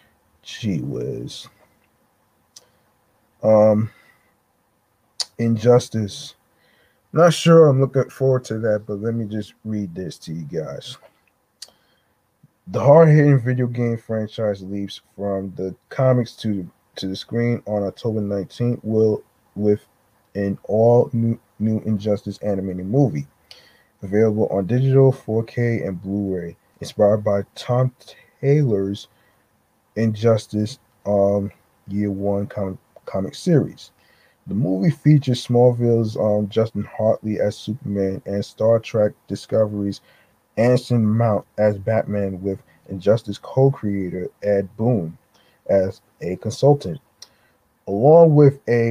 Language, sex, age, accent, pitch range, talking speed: English, male, 20-39, American, 100-120 Hz, 110 wpm